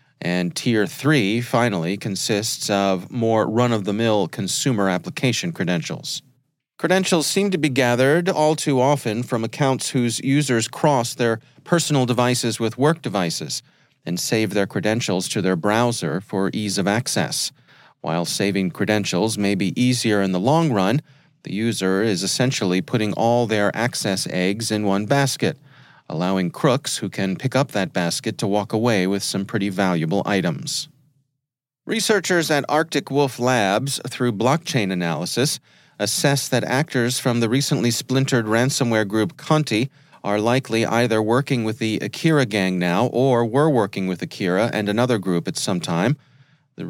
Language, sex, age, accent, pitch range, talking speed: English, male, 40-59, American, 105-140 Hz, 150 wpm